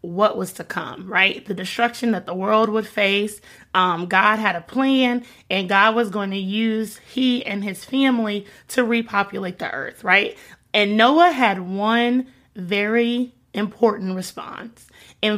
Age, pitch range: 30-49, 200-250 Hz